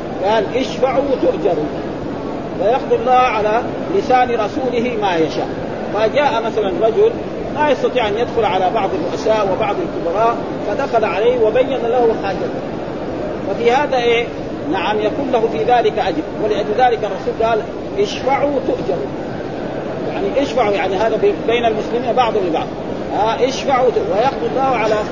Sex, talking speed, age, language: male, 135 wpm, 40-59, Arabic